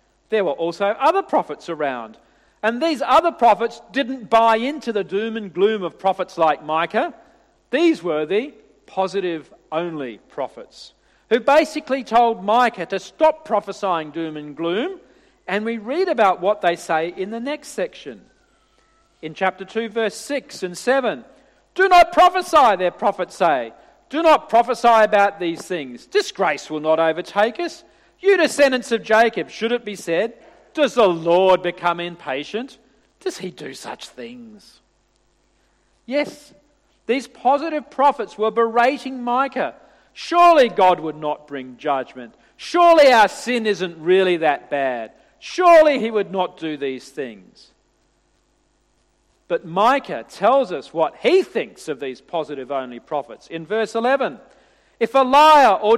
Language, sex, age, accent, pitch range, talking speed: English, male, 50-69, Australian, 170-275 Hz, 145 wpm